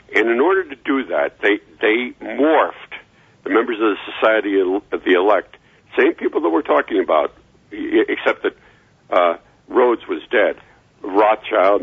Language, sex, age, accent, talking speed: English, male, 60-79, American, 155 wpm